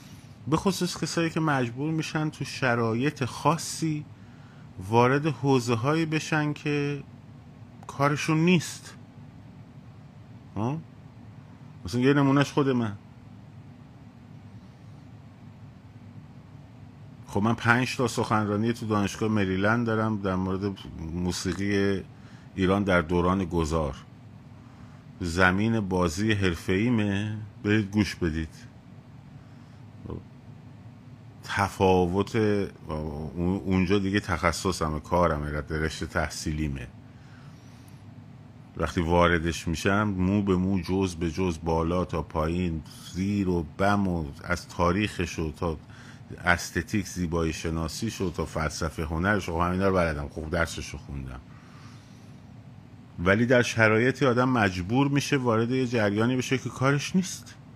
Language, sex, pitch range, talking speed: Persian, male, 90-130 Hz, 100 wpm